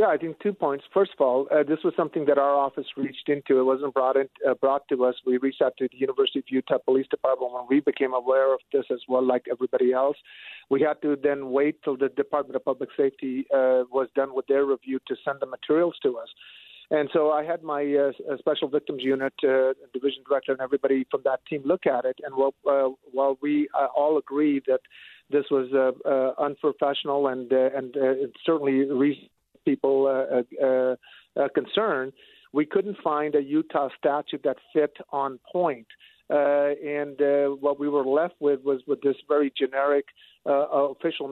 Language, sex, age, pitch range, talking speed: English, male, 50-69, 135-150 Hz, 200 wpm